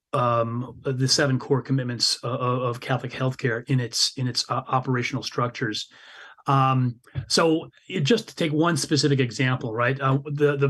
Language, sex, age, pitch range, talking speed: English, male, 30-49, 130-150 Hz, 165 wpm